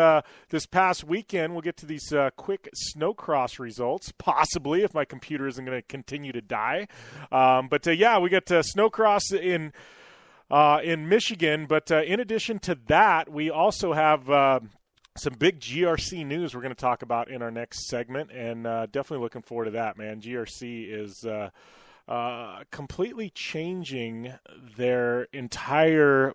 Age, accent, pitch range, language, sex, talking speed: 30-49, American, 120-165 Hz, English, male, 170 wpm